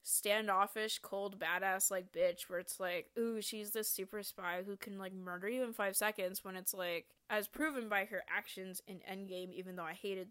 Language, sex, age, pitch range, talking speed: English, female, 20-39, 195-230 Hz, 205 wpm